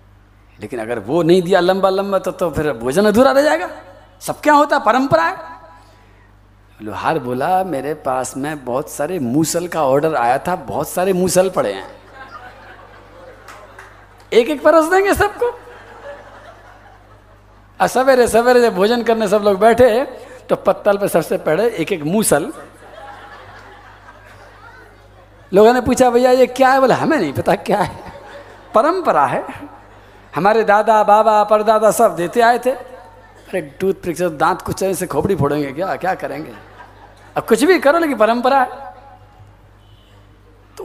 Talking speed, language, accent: 140 wpm, Hindi, native